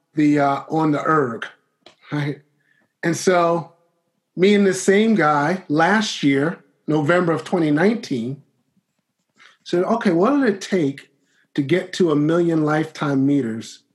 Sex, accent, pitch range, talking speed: male, American, 150-195 Hz, 135 wpm